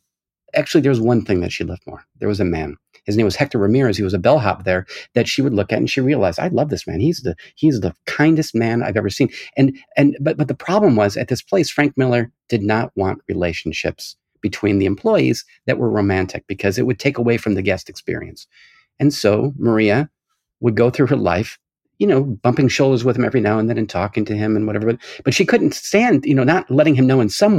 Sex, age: male, 40-59